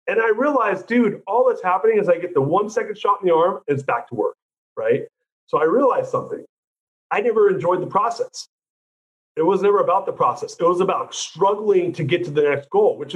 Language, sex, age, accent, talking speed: English, male, 40-59, American, 225 wpm